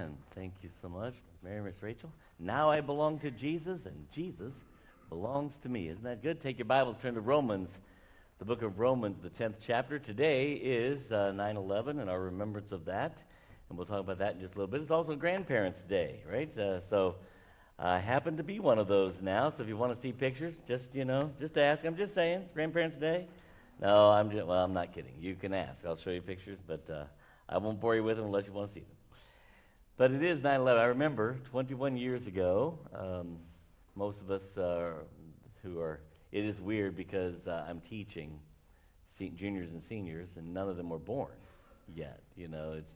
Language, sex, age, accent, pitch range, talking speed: English, male, 60-79, American, 90-120 Hz, 210 wpm